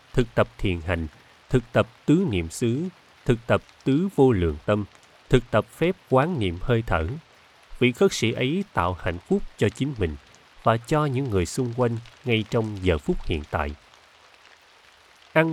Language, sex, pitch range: Vietnamese, male, 95-135 Hz